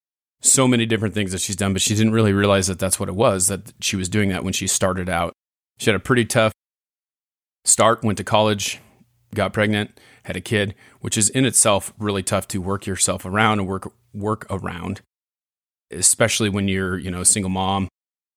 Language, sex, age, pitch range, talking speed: English, male, 30-49, 95-105 Hz, 205 wpm